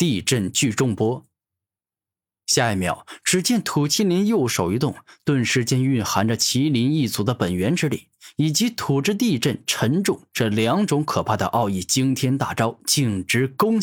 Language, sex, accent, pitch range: Chinese, male, native, 100-145 Hz